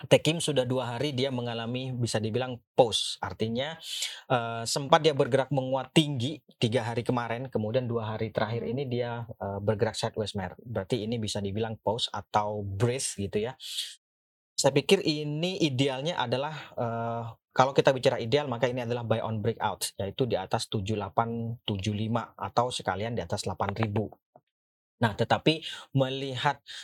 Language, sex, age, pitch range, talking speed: Indonesian, male, 30-49, 110-130 Hz, 145 wpm